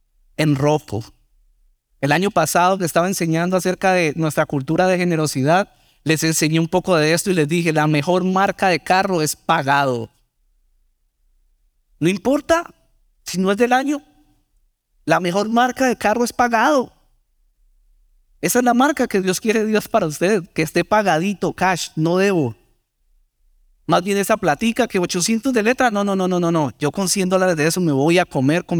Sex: male